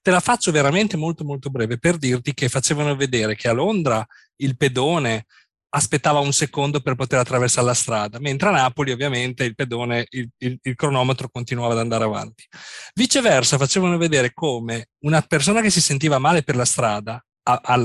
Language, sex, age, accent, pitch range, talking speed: Italian, male, 40-59, native, 120-145 Hz, 180 wpm